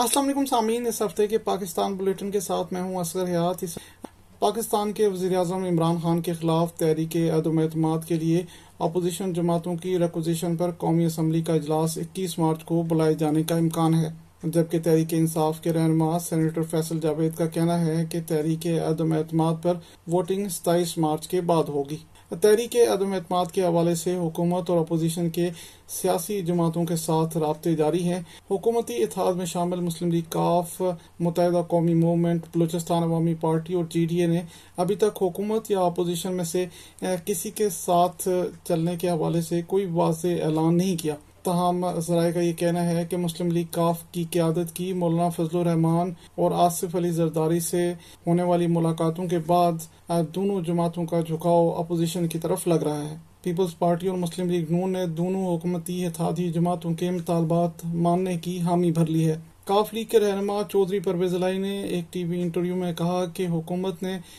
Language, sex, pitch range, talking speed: Urdu, male, 165-185 Hz, 175 wpm